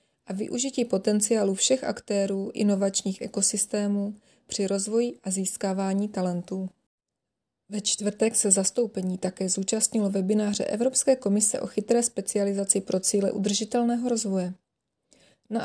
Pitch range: 195-225 Hz